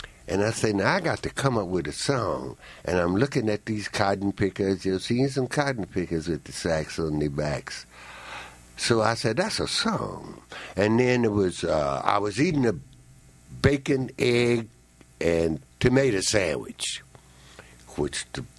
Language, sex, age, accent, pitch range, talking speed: English, male, 60-79, American, 80-125 Hz, 170 wpm